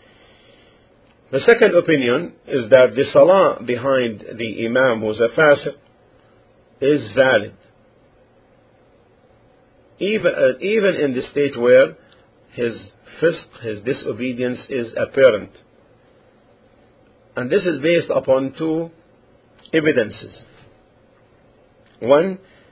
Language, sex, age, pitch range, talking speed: English, male, 50-69, 115-155 Hz, 95 wpm